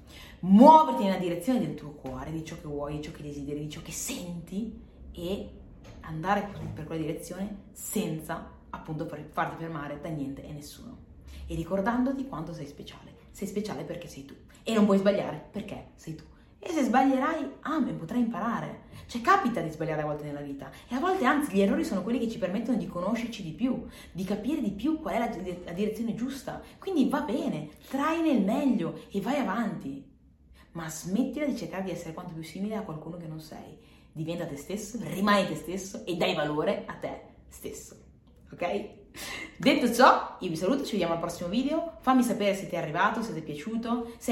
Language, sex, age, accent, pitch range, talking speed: Italian, female, 30-49, native, 160-240 Hz, 195 wpm